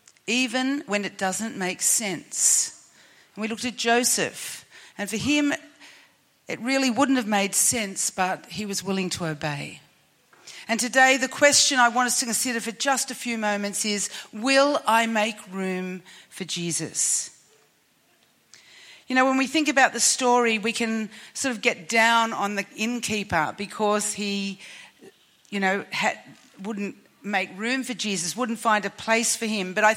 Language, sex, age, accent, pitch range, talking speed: English, female, 40-59, Australian, 205-255 Hz, 160 wpm